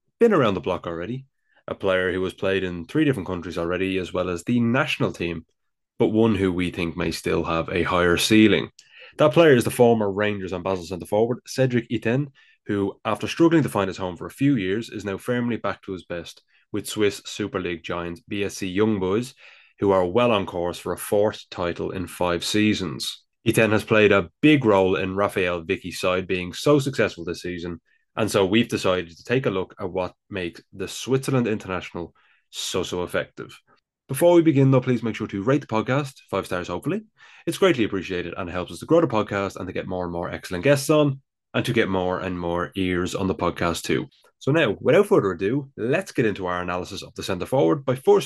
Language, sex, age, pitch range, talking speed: English, male, 20-39, 90-115 Hz, 215 wpm